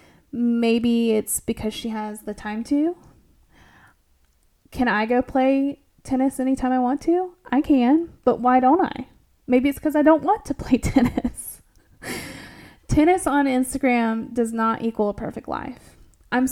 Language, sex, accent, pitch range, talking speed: English, female, American, 220-265 Hz, 155 wpm